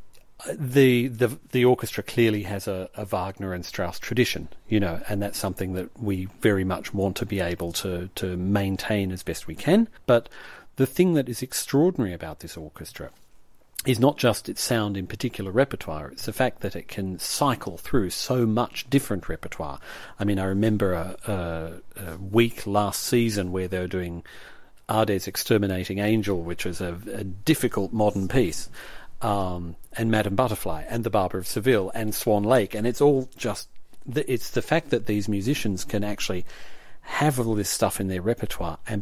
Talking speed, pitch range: 180 wpm, 95-120 Hz